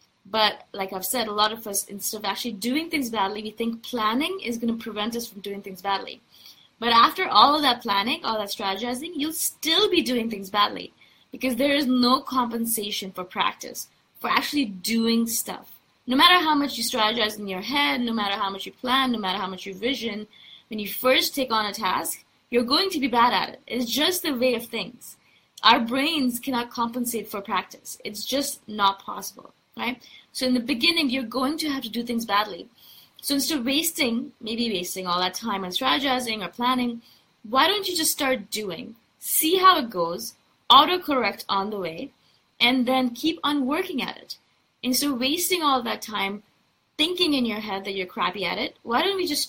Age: 20-39